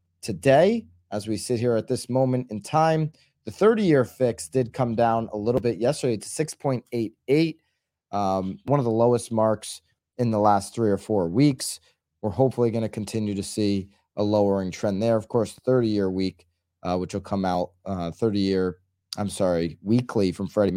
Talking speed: 175 wpm